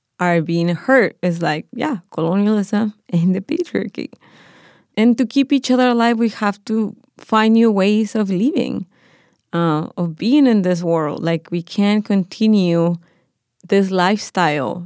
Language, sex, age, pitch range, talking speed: English, female, 20-39, 175-210 Hz, 145 wpm